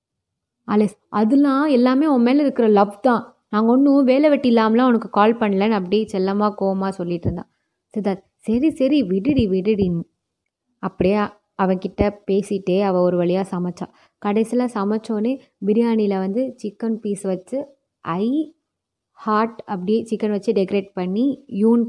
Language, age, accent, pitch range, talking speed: Tamil, 20-39, native, 195-240 Hz, 130 wpm